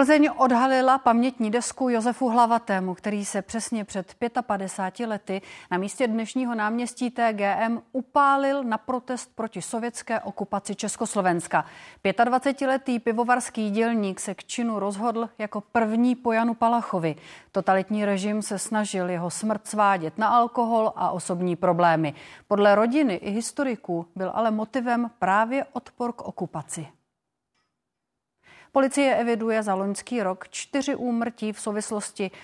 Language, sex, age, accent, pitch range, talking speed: Czech, female, 30-49, native, 195-240 Hz, 125 wpm